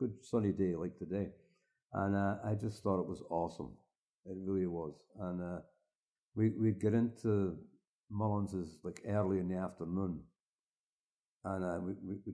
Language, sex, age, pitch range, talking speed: English, male, 60-79, 90-105 Hz, 160 wpm